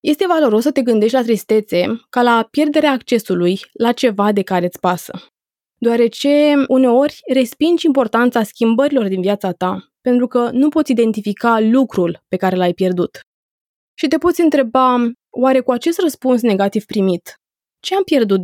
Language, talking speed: Romanian, 155 wpm